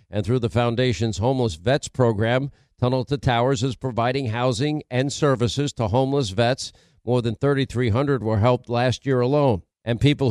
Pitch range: 120-140 Hz